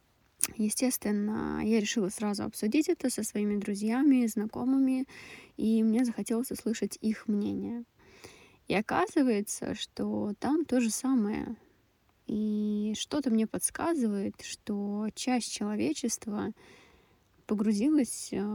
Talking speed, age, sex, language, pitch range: 105 wpm, 20-39, female, Russian, 200-235 Hz